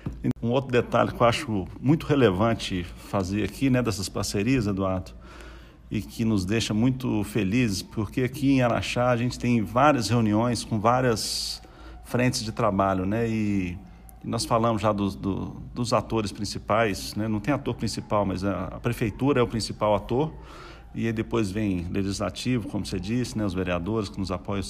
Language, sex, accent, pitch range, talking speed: Portuguese, male, Brazilian, 100-120 Hz, 170 wpm